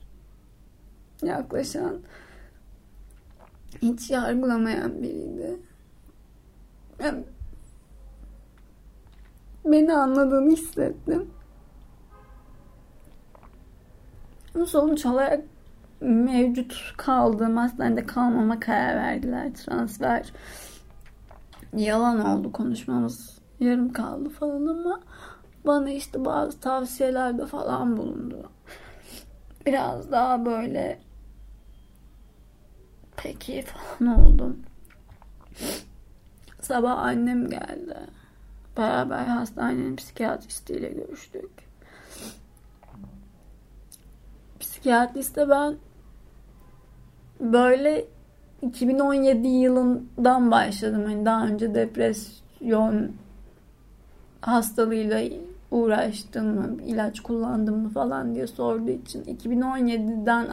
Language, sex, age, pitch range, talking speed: Turkish, female, 30-49, 225-285 Hz, 65 wpm